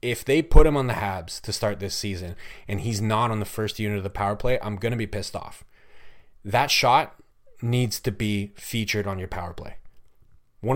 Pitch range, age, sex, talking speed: 100-120 Hz, 30-49, male, 220 wpm